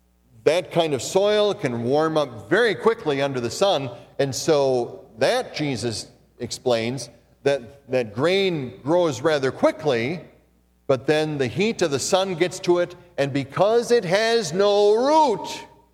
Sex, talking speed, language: male, 145 wpm, English